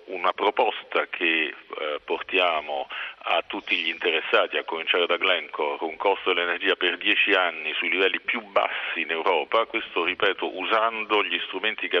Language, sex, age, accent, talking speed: Italian, male, 50-69, native, 155 wpm